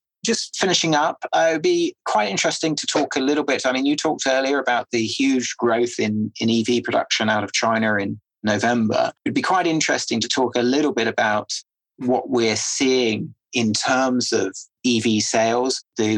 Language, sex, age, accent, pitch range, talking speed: English, male, 30-49, British, 110-130 Hz, 195 wpm